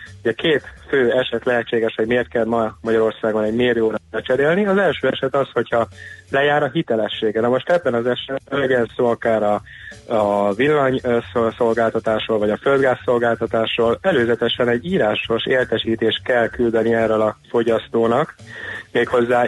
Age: 30-49